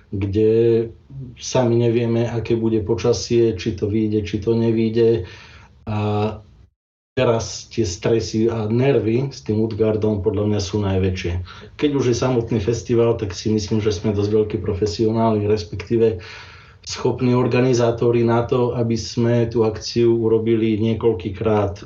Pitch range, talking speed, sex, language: 105-115 Hz, 135 wpm, male, Slovak